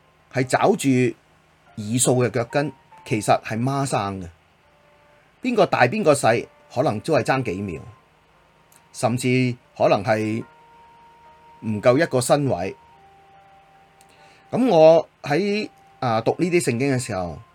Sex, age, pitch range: male, 30-49, 110-155 Hz